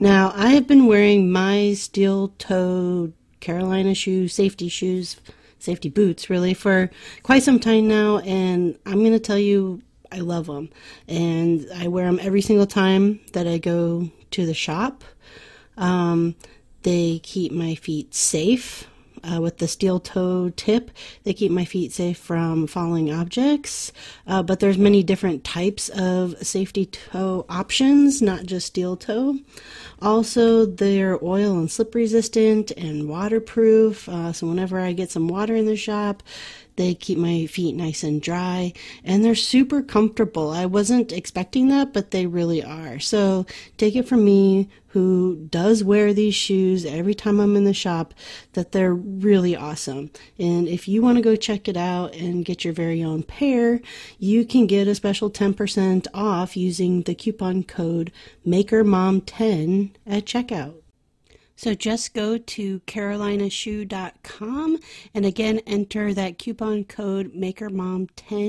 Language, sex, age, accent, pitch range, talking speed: English, female, 30-49, American, 175-215 Hz, 150 wpm